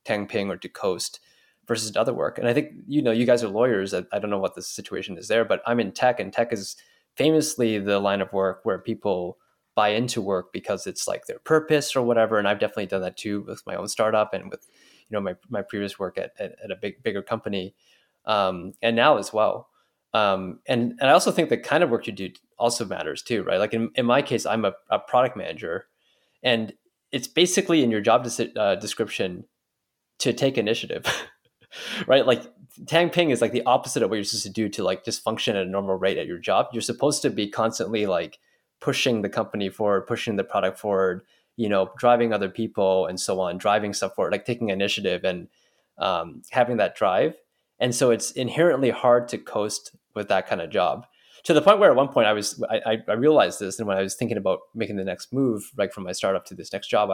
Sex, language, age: male, English, 20-39